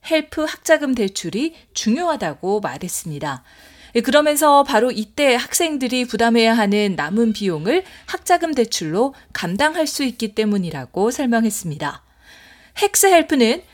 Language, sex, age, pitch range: Korean, female, 40-59, 195-275 Hz